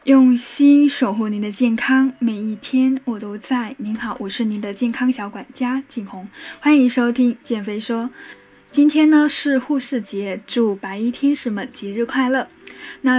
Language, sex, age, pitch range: Chinese, female, 10-29, 220-265 Hz